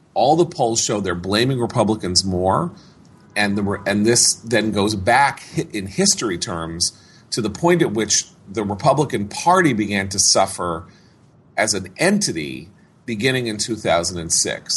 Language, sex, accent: English, male, American